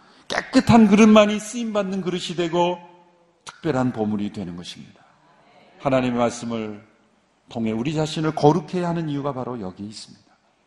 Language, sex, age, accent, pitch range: Korean, male, 50-69, native, 125-180 Hz